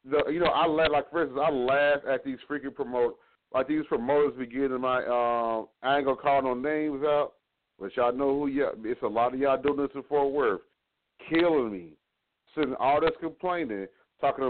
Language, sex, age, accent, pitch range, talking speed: English, male, 30-49, American, 125-170 Hz, 210 wpm